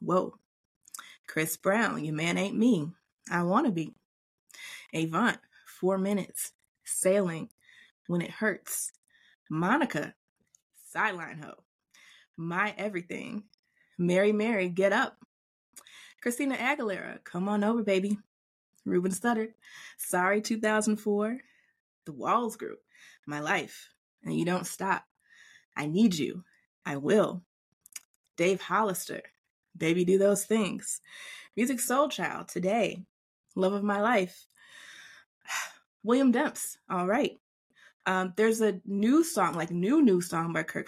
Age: 20-39